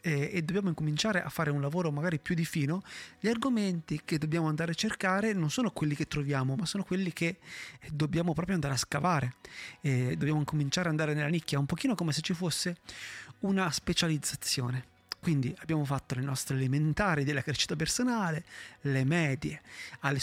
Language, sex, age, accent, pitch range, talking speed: Italian, male, 30-49, native, 145-180 Hz, 175 wpm